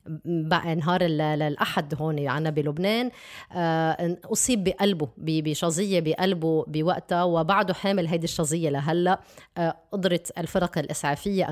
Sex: female